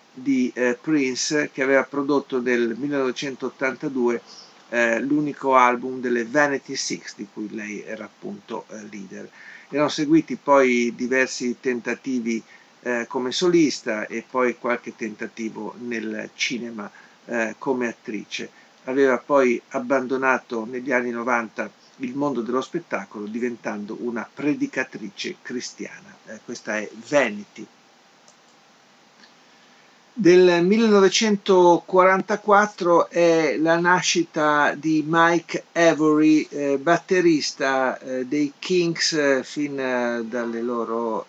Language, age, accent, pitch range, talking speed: Italian, 50-69, native, 115-145 Hz, 100 wpm